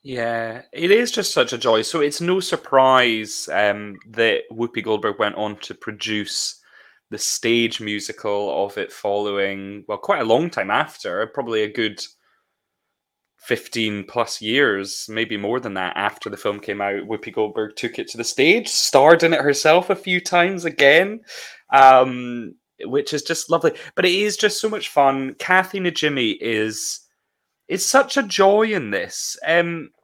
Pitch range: 115-185 Hz